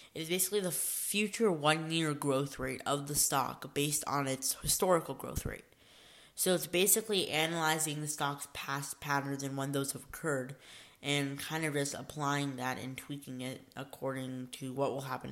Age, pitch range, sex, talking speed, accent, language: 10-29, 135-160 Hz, female, 170 wpm, American, English